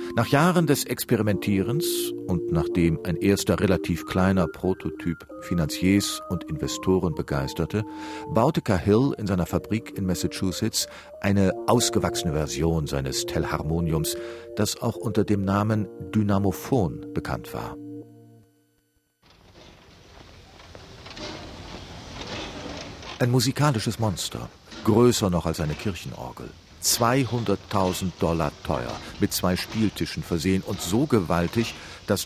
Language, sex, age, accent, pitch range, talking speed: German, male, 50-69, German, 85-110 Hz, 100 wpm